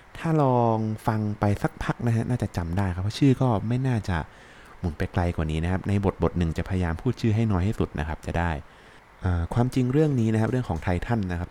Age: 20-39